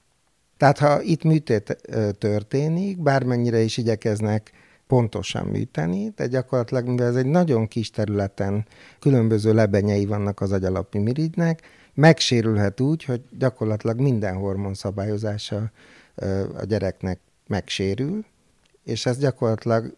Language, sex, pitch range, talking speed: Hungarian, male, 100-130 Hz, 110 wpm